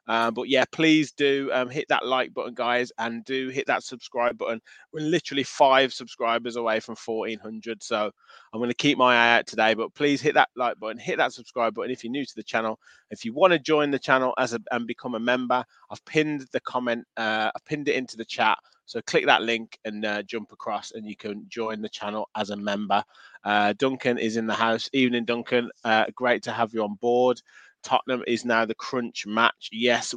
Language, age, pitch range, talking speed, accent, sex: English, 20-39, 115-135 Hz, 225 wpm, British, male